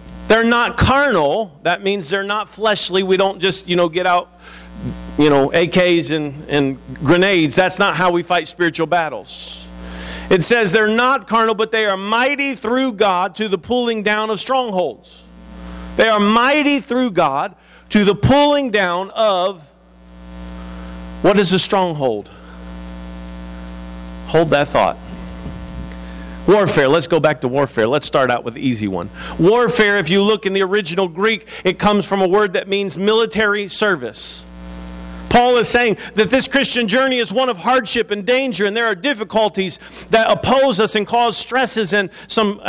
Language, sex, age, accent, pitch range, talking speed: English, male, 50-69, American, 145-235 Hz, 165 wpm